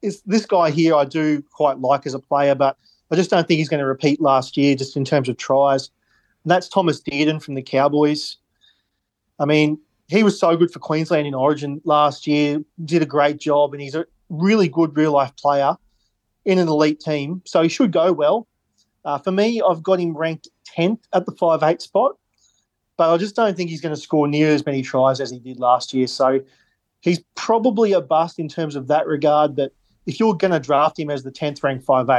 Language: English